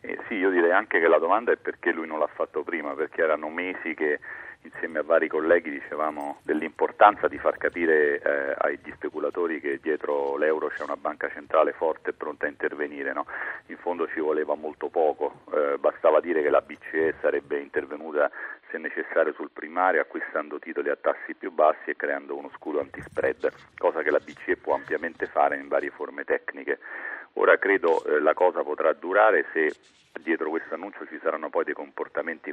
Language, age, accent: Italian, 40-59, native